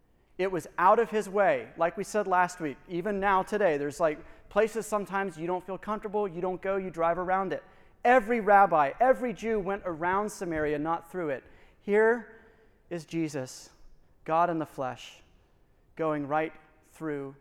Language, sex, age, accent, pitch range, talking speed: English, male, 30-49, American, 140-185 Hz, 170 wpm